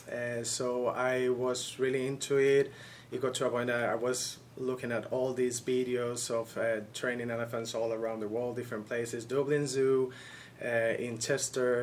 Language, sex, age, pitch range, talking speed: English, male, 30-49, 120-135 Hz, 180 wpm